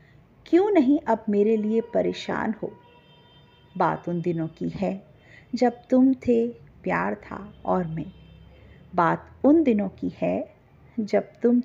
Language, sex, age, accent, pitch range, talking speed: Hindi, female, 50-69, native, 180-240 Hz, 135 wpm